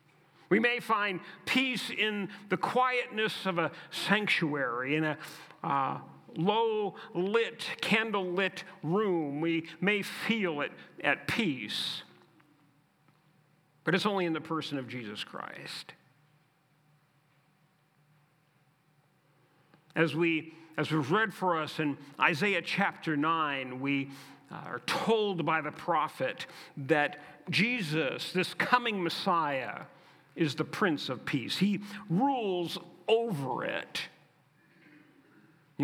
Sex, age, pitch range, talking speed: male, 50-69, 155-195 Hz, 105 wpm